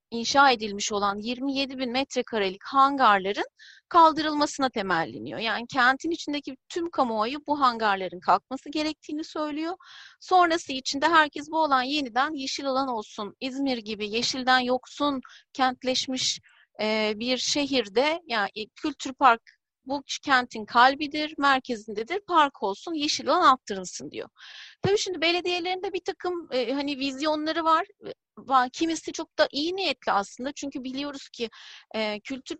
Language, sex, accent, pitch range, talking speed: Turkish, female, native, 235-300 Hz, 125 wpm